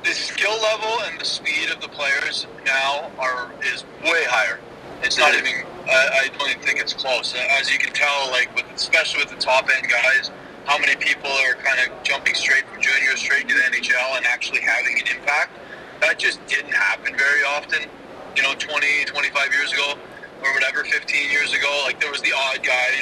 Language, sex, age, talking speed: English, male, 30-49, 205 wpm